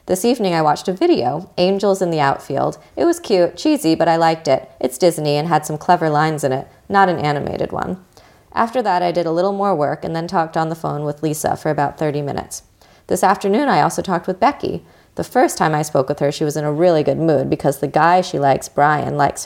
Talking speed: 245 wpm